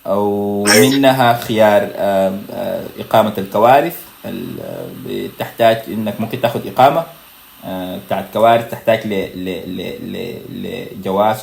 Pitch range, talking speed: 105-130 Hz, 80 wpm